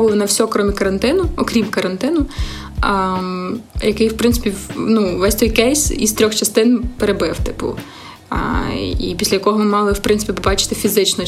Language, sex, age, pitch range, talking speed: Ukrainian, female, 20-39, 195-225 Hz, 155 wpm